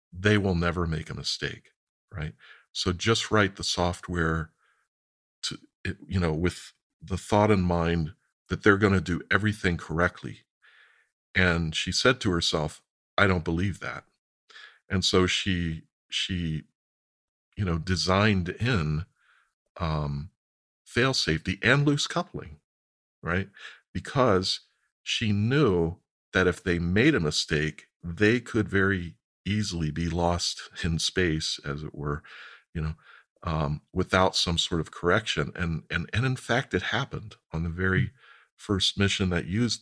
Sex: male